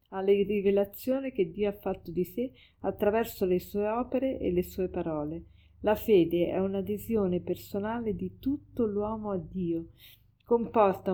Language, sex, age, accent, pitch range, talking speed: Italian, female, 50-69, native, 175-210 Hz, 145 wpm